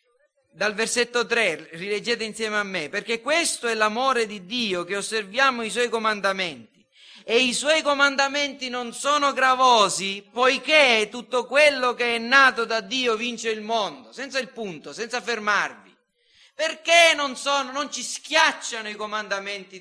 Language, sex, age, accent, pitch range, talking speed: Italian, male, 40-59, native, 215-285 Hz, 150 wpm